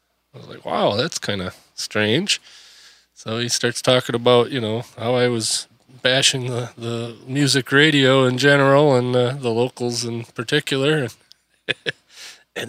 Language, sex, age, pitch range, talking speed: English, male, 20-39, 120-155 Hz, 150 wpm